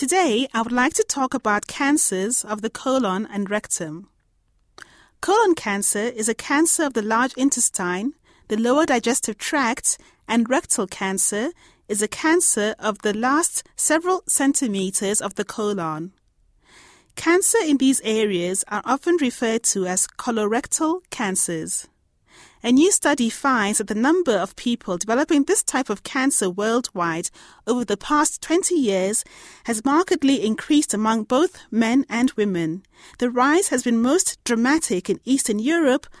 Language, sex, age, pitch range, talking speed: English, female, 30-49, 210-290 Hz, 145 wpm